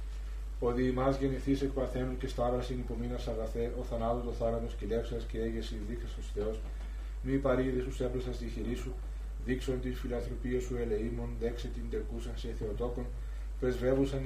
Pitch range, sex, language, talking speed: 115-125 Hz, male, Greek, 150 wpm